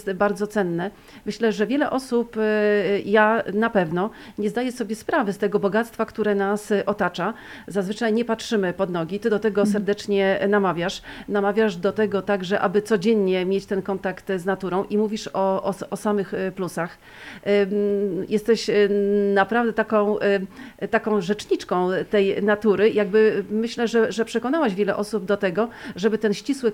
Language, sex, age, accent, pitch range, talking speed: Polish, female, 40-59, native, 195-220 Hz, 150 wpm